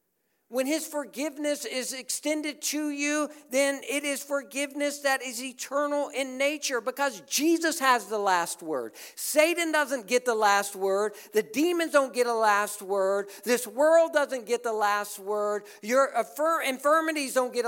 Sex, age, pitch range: male, 50-69, 215-295 Hz